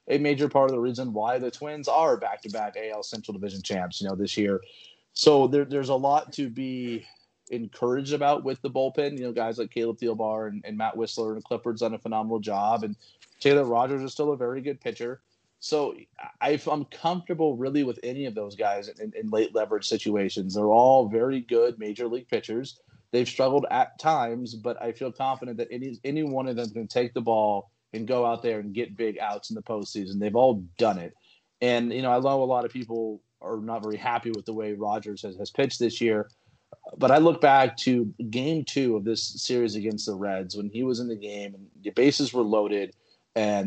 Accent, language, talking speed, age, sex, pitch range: American, English, 215 wpm, 30-49, male, 110-135 Hz